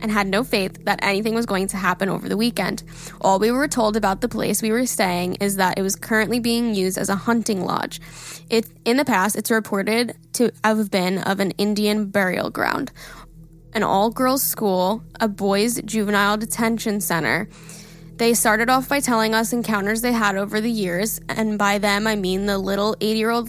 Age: 10-29